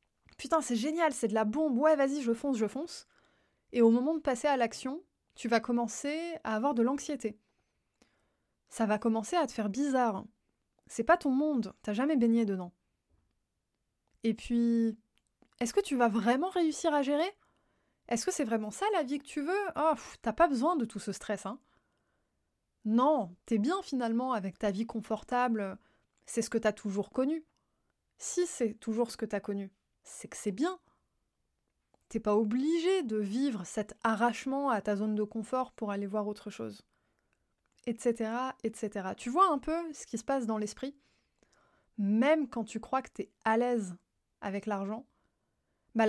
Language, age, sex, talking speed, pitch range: French, 20-39, female, 180 wpm, 220-280 Hz